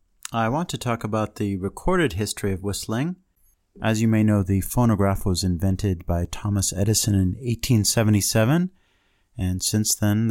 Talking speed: 150 wpm